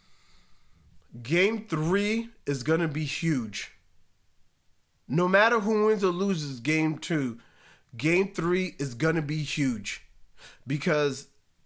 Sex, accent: male, American